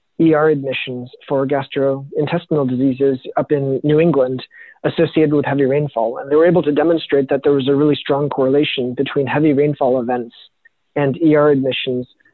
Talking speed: 160 wpm